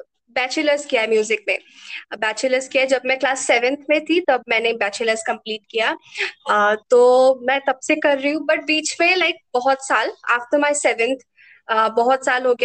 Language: English